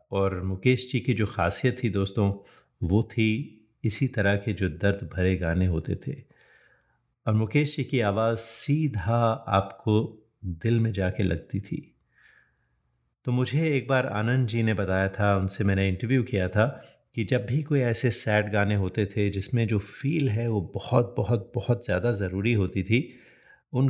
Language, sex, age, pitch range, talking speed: Hindi, male, 30-49, 95-115 Hz, 170 wpm